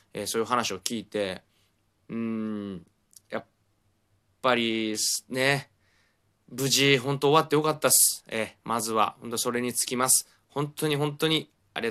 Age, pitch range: 20-39, 105-135 Hz